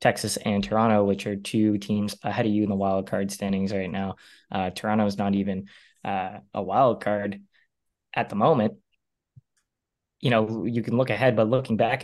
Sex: male